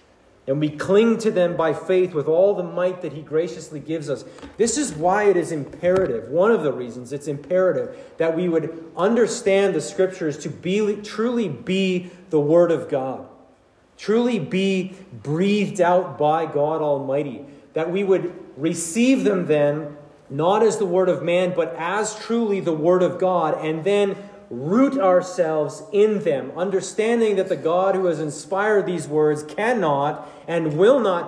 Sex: male